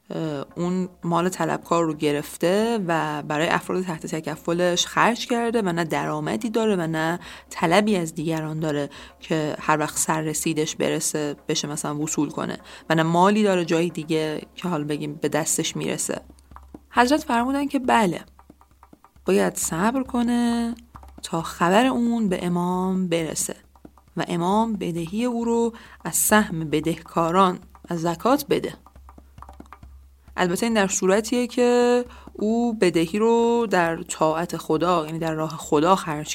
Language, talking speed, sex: English, 140 wpm, female